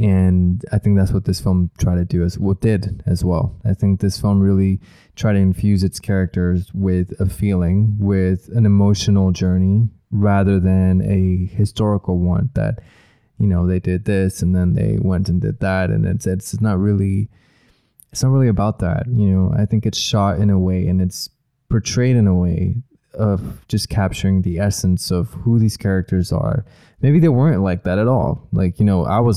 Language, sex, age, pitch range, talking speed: English, male, 20-39, 90-105 Hz, 200 wpm